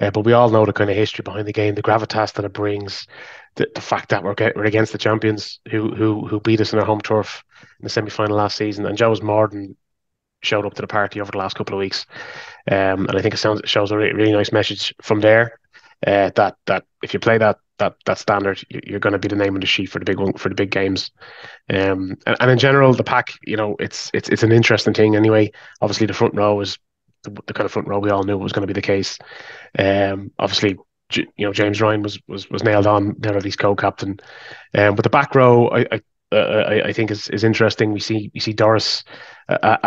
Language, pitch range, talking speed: English, 100-110 Hz, 255 wpm